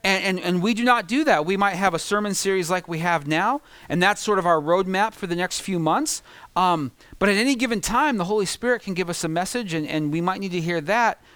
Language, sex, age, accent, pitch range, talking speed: English, male, 40-59, American, 170-225 Hz, 270 wpm